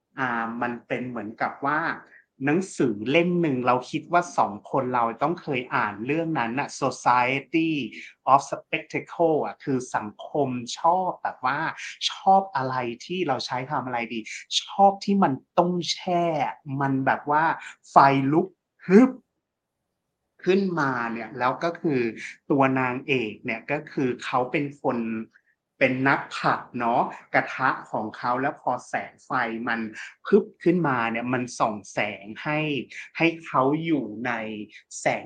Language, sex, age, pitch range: Thai, male, 30-49, 120-165 Hz